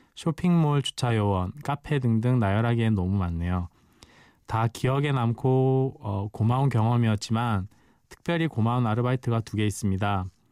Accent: native